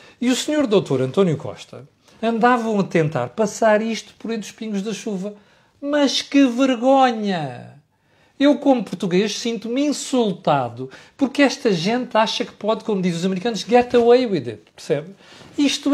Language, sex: Portuguese, male